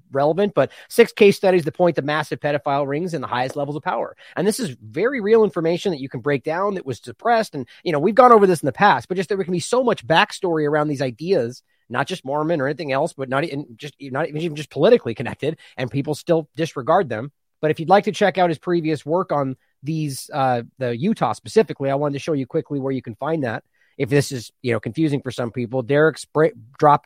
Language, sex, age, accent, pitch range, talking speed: English, male, 30-49, American, 135-170 Hz, 245 wpm